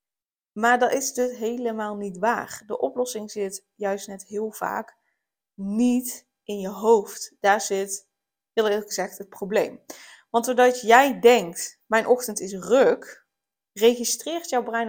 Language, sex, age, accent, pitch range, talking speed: Dutch, female, 20-39, Dutch, 205-245 Hz, 145 wpm